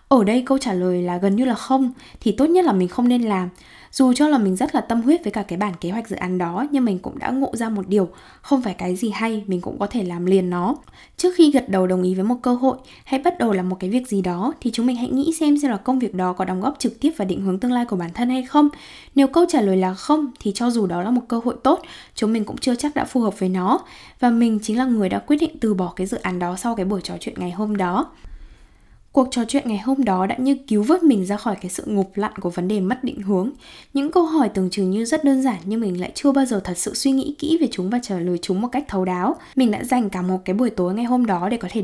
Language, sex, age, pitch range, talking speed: Vietnamese, female, 10-29, 190-265 Hz, 305 wpm